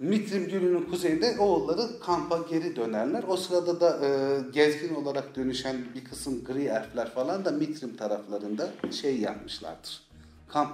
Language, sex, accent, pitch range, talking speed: Turkish, male, native, 110-160 Hz, 140 wpm